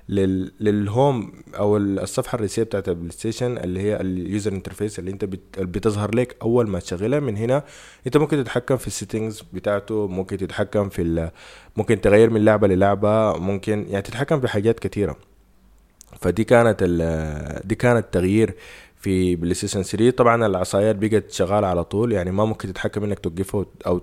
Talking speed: 155 wpm